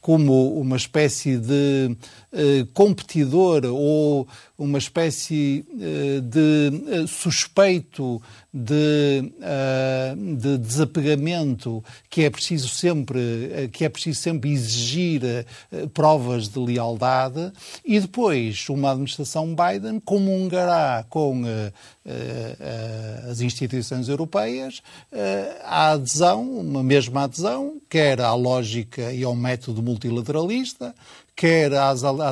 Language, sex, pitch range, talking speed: Portuguese, male, 125-165 Hz, 110 wpm